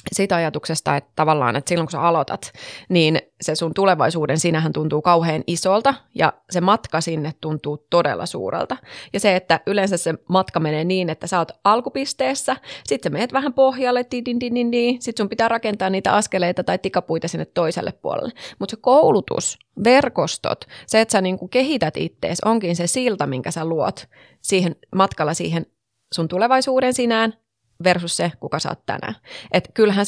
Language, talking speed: Finnish, 165 wpm